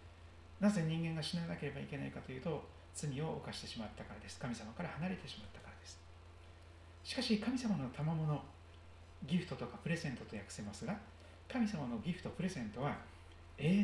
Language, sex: Japanese, male